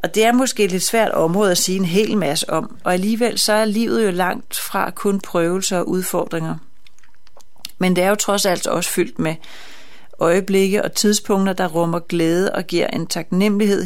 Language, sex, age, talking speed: Danish, female, 30-49, 195 wpm